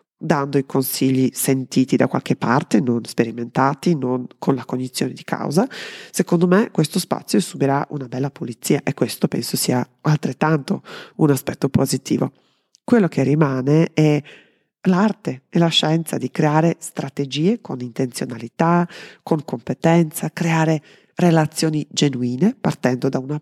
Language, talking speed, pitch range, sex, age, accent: Italian, 135 wpm, 135-175 Hz, female, 30-49, native